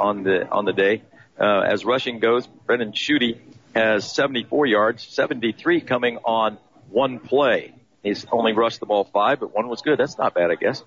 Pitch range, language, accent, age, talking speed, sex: 100-130 Hz, English, American, 50-69, 190 wpm, male